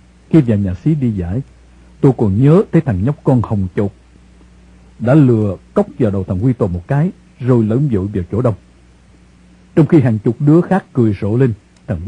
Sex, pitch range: male, 95-140 Hz